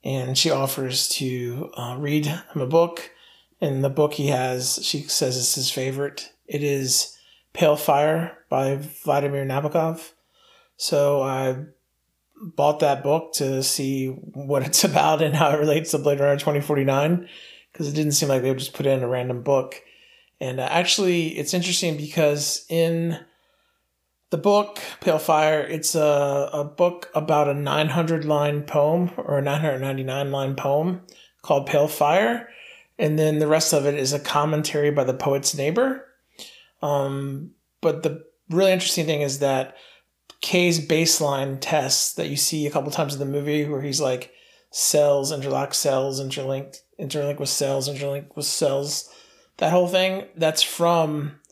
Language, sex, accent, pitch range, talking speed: English, male, American, 140-160 Hz, 155 wpm